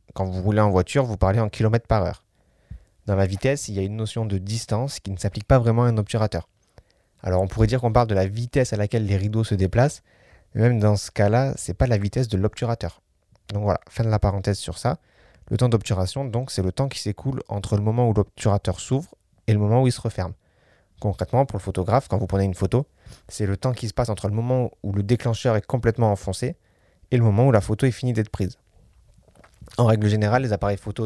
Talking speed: 245 wpm